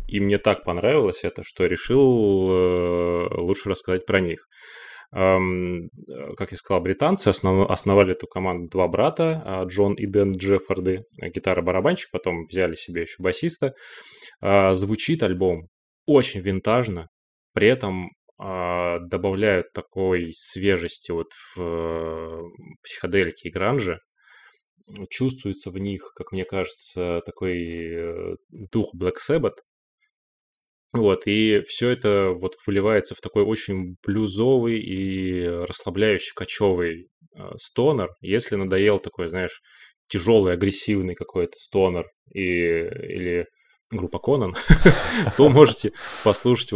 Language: Russian